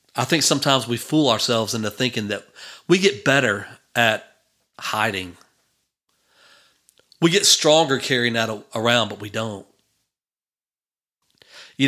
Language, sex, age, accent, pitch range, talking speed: English, male, 40-59, American, 115-155 Hz, 120 wpm